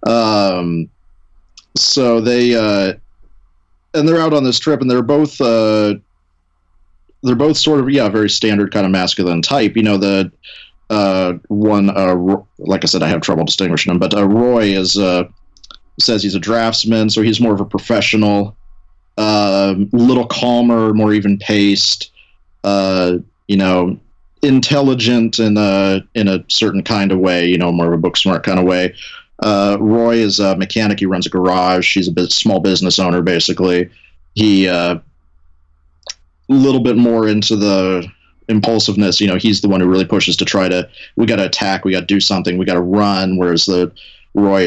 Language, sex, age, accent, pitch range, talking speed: English, male, 30-49, American, 90-110 Hz, 180 wpm